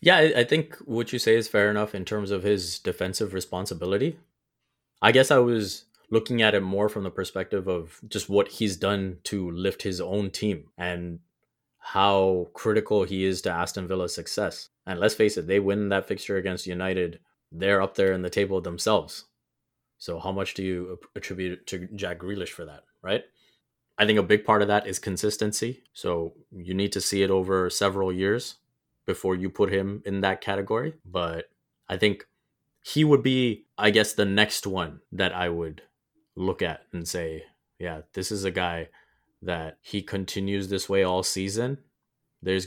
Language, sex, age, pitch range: English, male, 20-39, 90-105 Hz